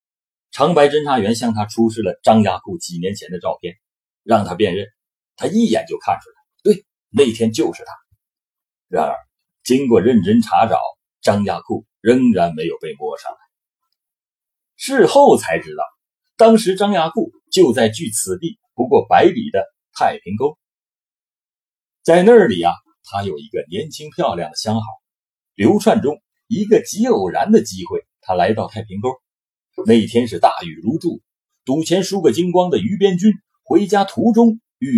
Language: Chinese